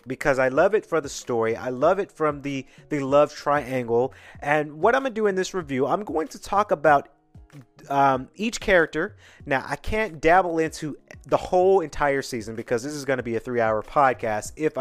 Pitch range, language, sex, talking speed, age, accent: 115-155 Hz, English, male, 205 wpm, 30-49, American